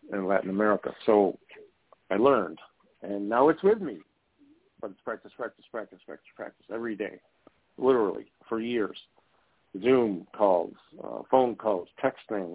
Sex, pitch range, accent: male, 105-125 Hz, American